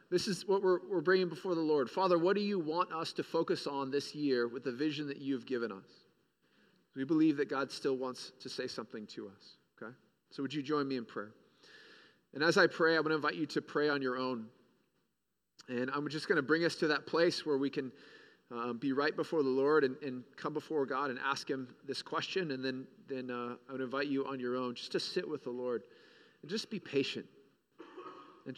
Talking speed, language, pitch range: 230 wpm, English, 130-155 Hz